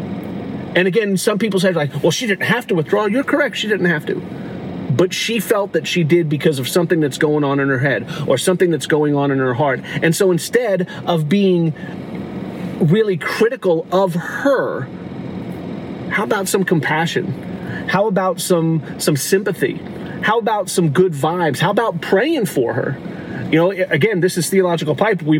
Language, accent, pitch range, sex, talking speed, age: English, American, 160-190 Hz, male, 180 wpm, 30-49